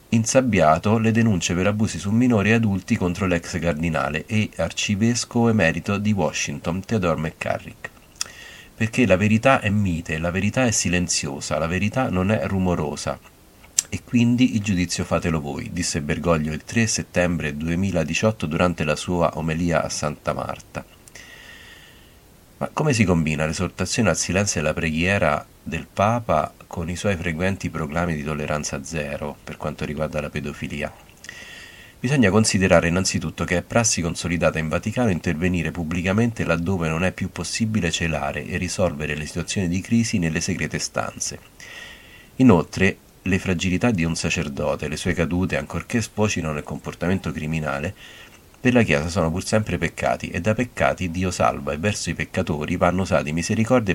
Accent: native